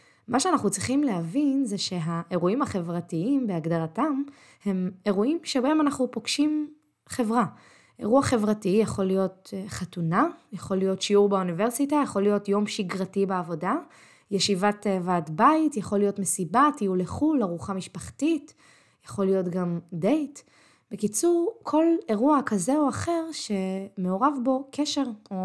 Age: 20-39